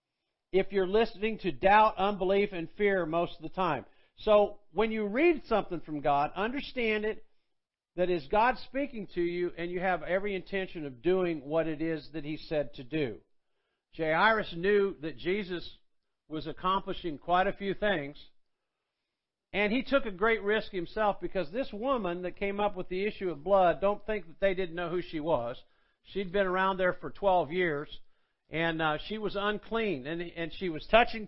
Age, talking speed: 50-69, 185 wpm